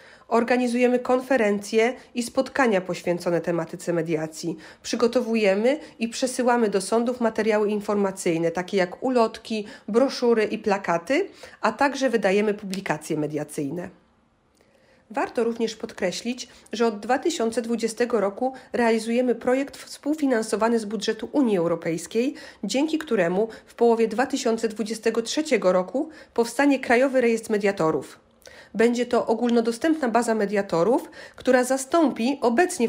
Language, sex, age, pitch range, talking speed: Polish, female, 40-59, 200-255 Hz, 105 wpm